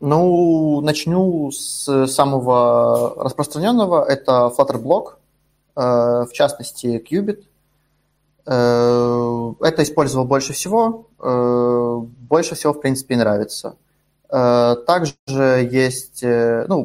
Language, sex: Russian, male